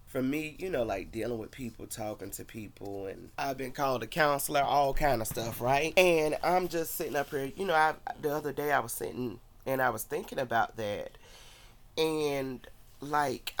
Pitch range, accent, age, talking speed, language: 115-145 Hz, American, 30-49, 200 wpm, English